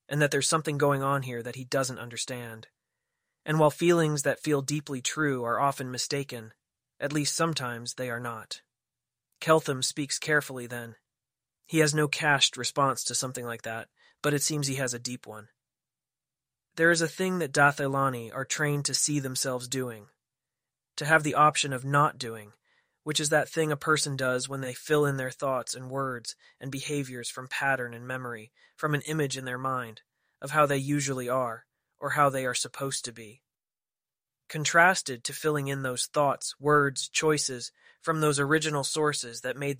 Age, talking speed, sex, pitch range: 20-39, 180 wpm, male, 125-145 Hz